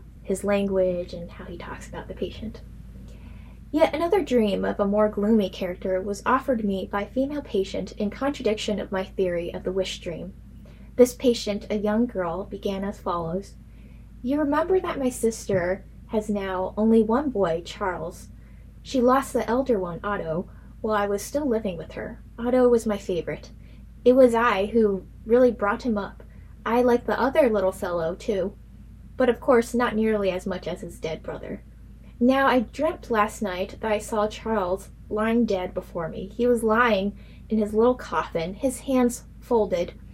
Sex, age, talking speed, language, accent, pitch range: female, 10-29, 175 wpm, English, American, 195-245 Hz